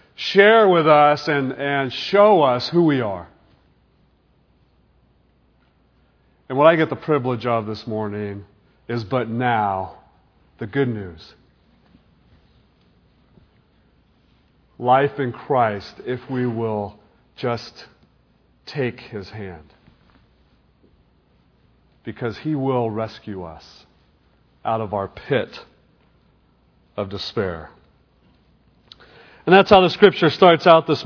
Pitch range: 115-160 Hz